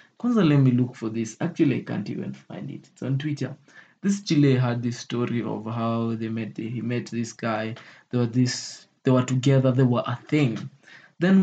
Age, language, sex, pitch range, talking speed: 20-39, English, male, 125-170 Hz, 200 wpm